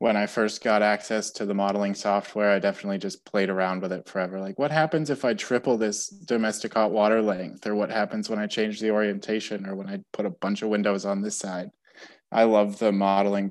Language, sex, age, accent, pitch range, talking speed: English, male, 20-39, American, 105-115 Hz, 225 wpm